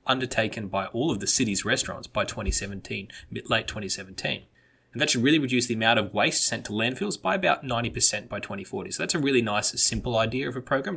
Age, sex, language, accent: 20-39, male, English, Australian